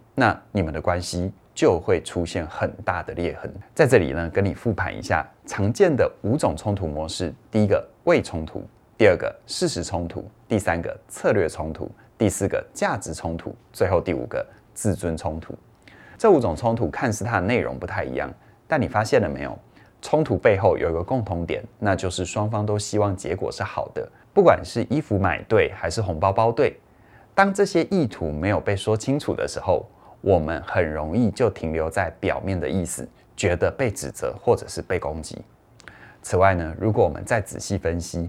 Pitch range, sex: 85-110 Hz, male